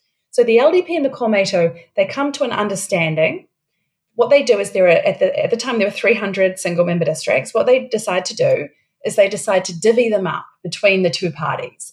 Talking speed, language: 215 wpm, English